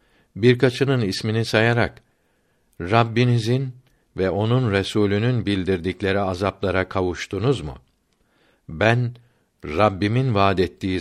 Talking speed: 80 wpm